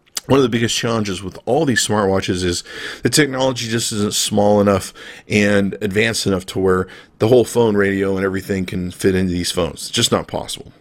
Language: English